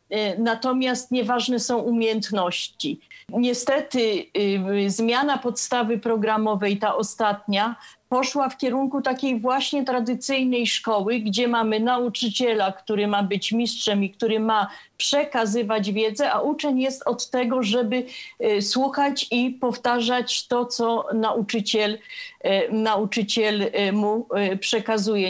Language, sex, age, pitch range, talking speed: English, female, 40-59, 220-255 Hz, 105 wpm